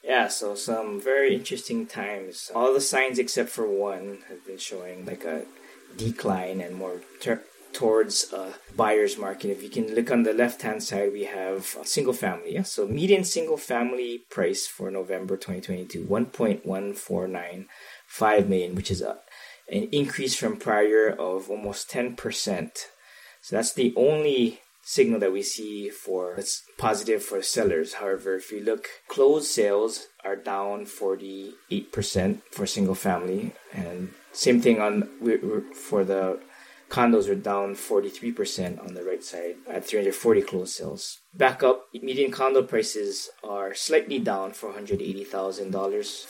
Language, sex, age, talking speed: English, male, 20-39, 135 wpm